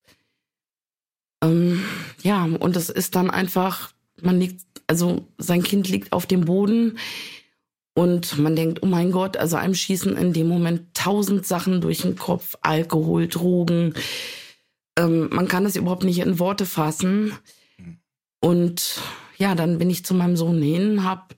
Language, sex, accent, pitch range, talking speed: German, female, German, 170-195 Hz, 150 wpm